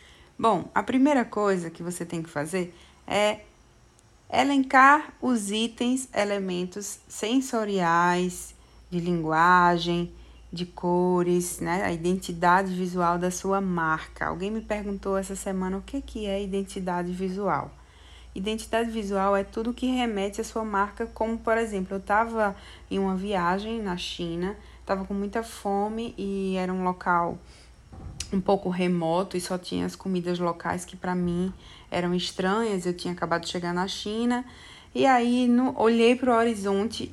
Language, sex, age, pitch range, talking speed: Portuguese, female, 20-39, 175-210 Hz, 145 wpm